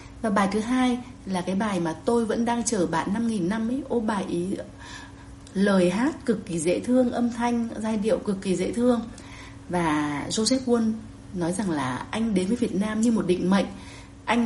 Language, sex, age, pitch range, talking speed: Vietnamese, female, 30-49, 175-235 Hz, 210 wpm